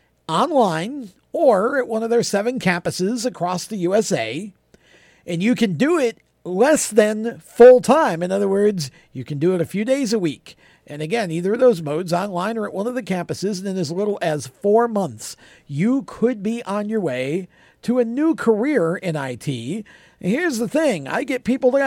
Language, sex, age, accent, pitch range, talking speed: English, male, 50-69, American, 170-235 Hz, 190 wpm